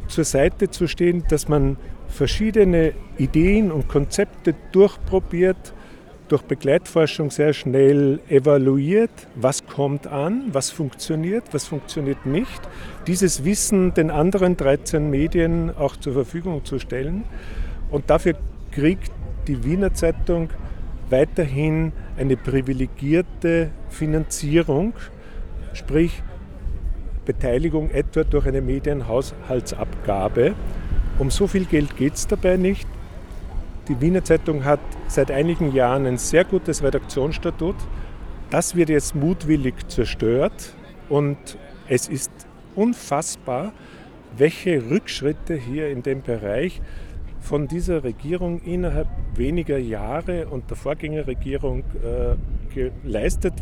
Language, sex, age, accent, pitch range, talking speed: German, male, 40-59, German, 130-165 Hz, 105 wpm